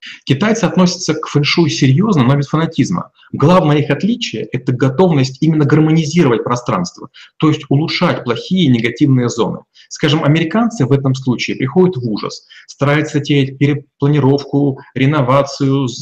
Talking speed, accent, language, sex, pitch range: 135 wpm, native, Russian, male, 130-165 Hz